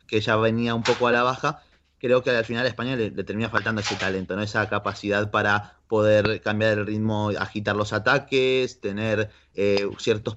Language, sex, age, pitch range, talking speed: Spanish, male, 20-39, 105-125 Hz, 195 wpm